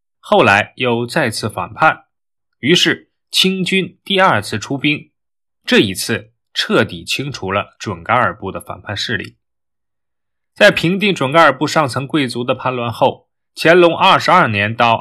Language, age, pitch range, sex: Chinese, 20-39, 115-175 Hz, male